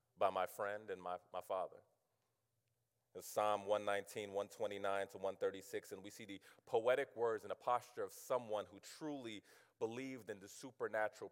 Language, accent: English, American